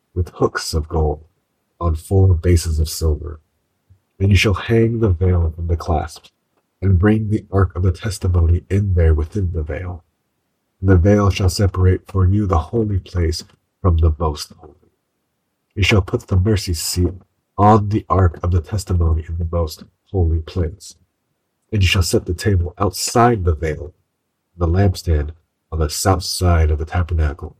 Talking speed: 175 wpm